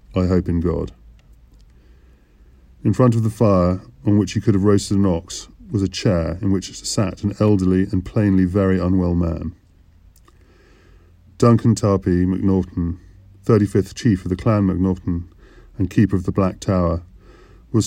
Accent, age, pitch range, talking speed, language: British, 40-59, 85-100 Hz, 155 wpm, English